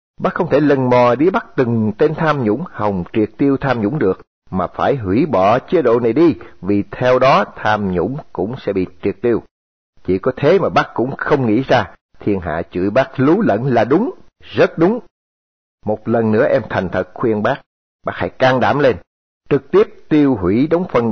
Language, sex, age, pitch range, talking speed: Vietnamese, male, 60-79, 100-140 Hz, 205 wpm